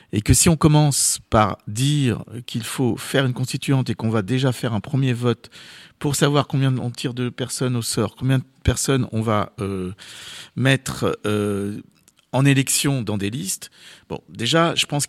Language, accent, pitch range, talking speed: French, French, 110-140 Hz, 185 wpm